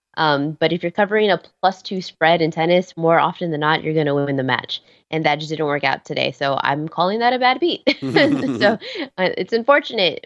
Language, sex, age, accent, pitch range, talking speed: English, female, 20-39, American, 160-195 Hz, 230 wpm